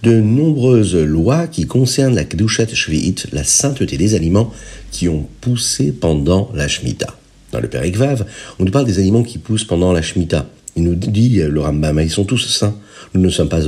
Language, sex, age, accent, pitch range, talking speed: French, male, 50-69, French, 85-120 Hz, 195 wpm